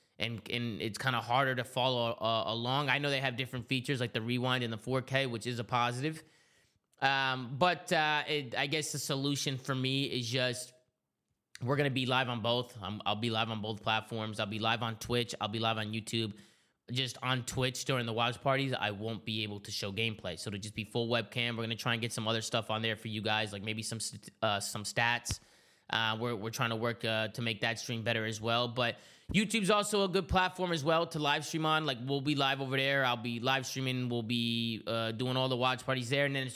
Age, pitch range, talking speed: 20-39, 115-150 Hz, 245 wpm